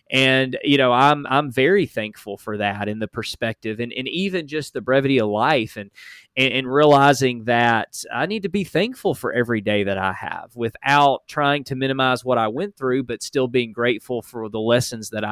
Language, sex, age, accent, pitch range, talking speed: English, male, 20-39, American, 120-145 Hz, 200 wpm